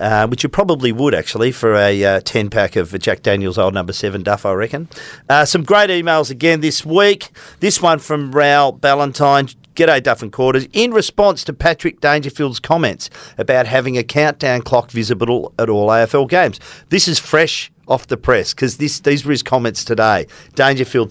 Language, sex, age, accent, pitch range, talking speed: English, male, 40-59, Australian, 110-150 Hz, 180 wpm